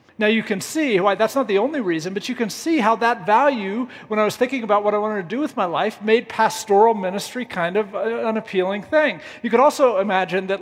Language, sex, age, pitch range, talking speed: English, male, 40-59, 185-245 Hz, 245 wpm